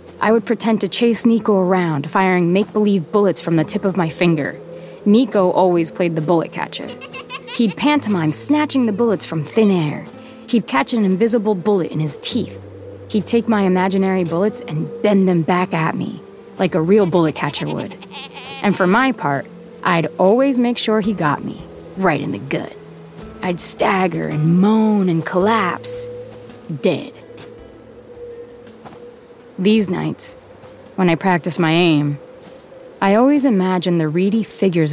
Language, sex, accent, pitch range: English, female, American, 160-225 Hz